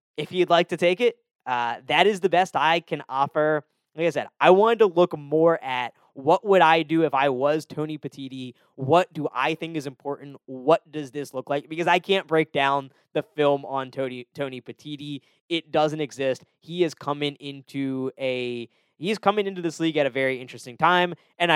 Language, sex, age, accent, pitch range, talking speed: English, male, 20-39, American, 130-160 Hz, 205 wpm